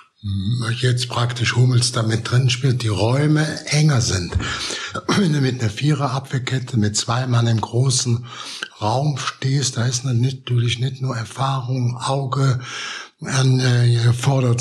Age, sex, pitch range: 60-79, male, 120-140 Hz